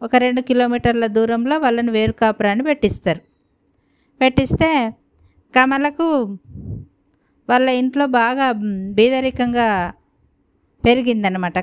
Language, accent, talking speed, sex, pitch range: Telugu, native, 70 wpm, female, 210-245 Hz